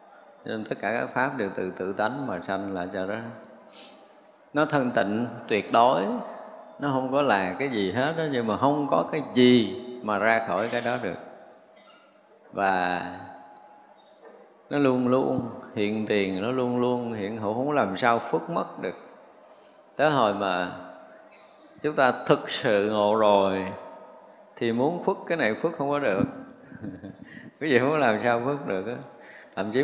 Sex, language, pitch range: male, Vietnamese, 100-125 Hz